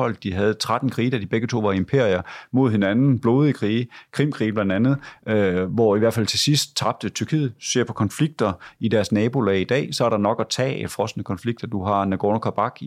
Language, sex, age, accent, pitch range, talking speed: Danish, male, 30-49, native, 105-125 Hz, 210 wpm